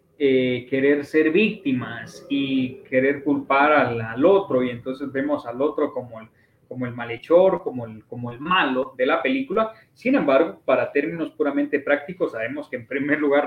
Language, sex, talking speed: Spanish, male, 175 wpm